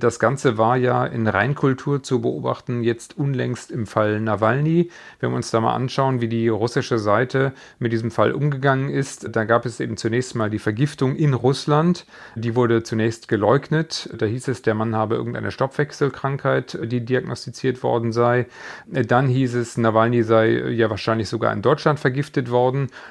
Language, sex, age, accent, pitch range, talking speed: German, male, 40-59, German, 115-135 Hz, 170 wpm